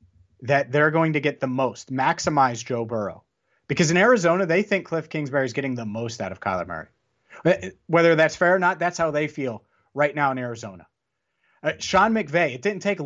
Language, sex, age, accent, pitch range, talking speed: English, male, 30-49, American, 130-180 Hz, 200 wpm